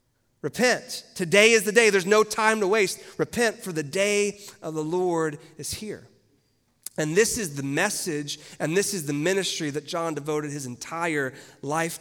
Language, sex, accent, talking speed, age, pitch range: English, male, American, 175 wpm, 30-49, 140-180 Hz